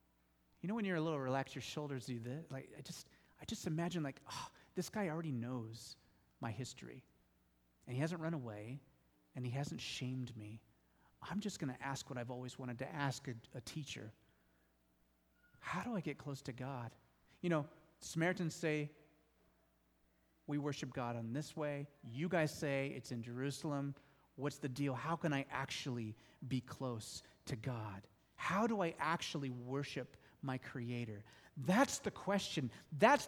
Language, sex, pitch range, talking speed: English, male, 125-190 Hz, 170 wpm